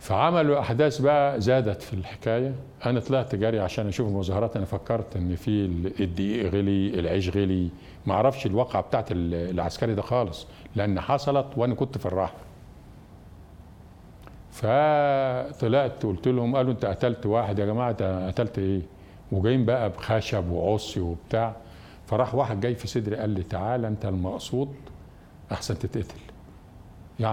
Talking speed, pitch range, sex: 135 wpm, 95-120 Hz, male